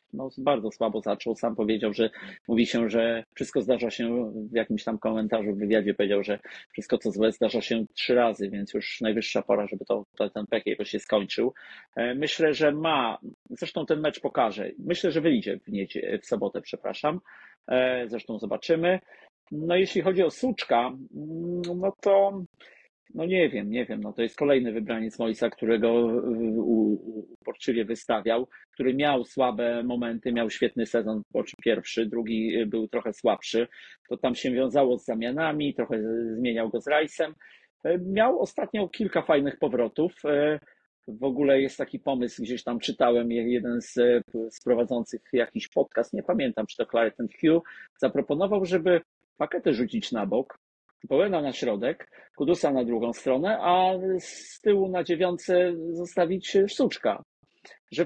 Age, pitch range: 40-59, 115-175 Hz